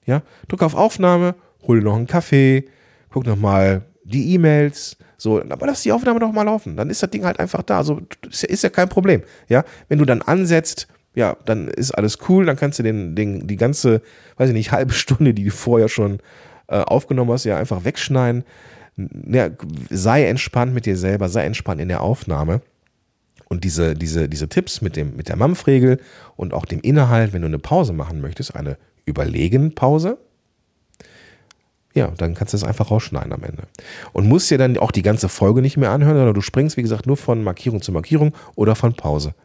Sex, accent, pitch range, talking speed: male, German, 95-135 Hz, 205 wpm